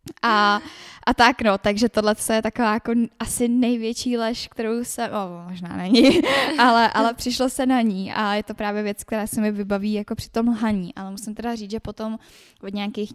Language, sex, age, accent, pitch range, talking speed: Czech, female, 10-29, native, 200-225 Hz, 210 wpm